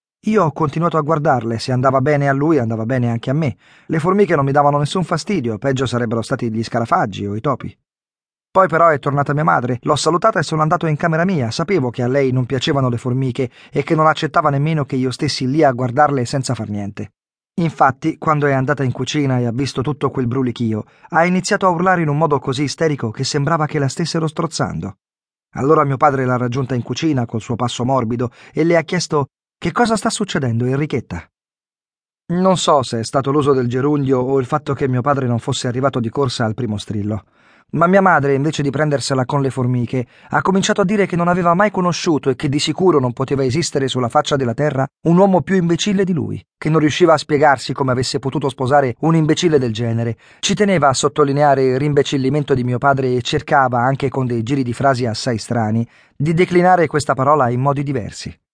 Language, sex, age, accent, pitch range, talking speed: Italian, male, 40-59, native, 125-160 Hz, 215 wpm